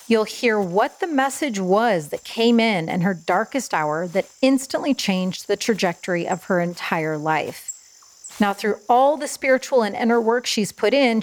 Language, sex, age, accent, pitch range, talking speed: English, female, 40-59, American, 190-250 Hz, 175 wpm